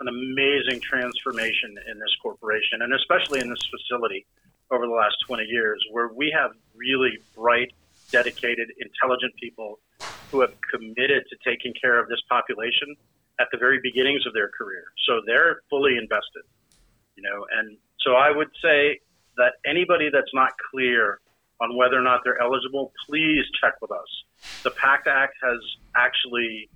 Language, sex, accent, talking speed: English, male, American, 160 wpm